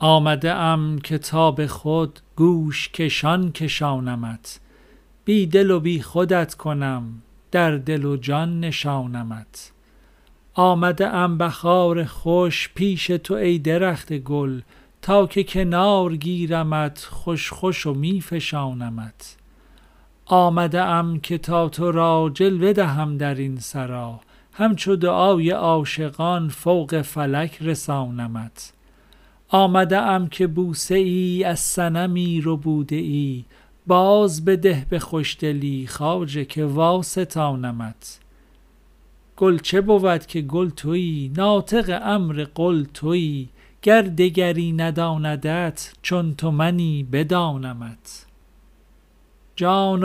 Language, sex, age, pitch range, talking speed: Persian, male, 50-69, 150-180 Hz, 110 wpm